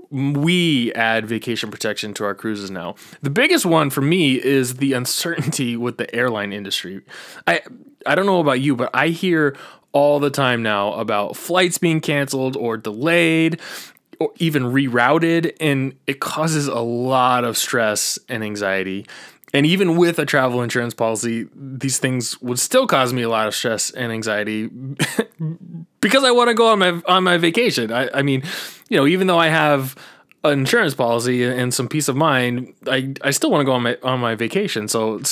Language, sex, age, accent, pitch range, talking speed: English, male, 20-39, American, 115-160 Hz, 185 wpm